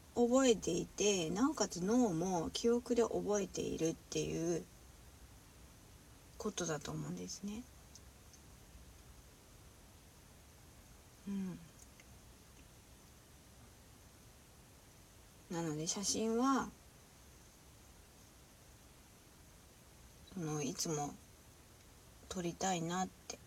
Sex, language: female, Japanese